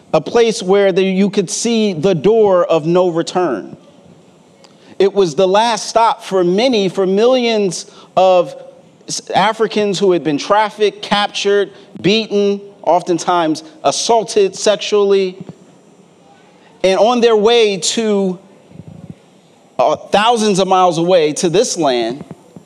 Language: English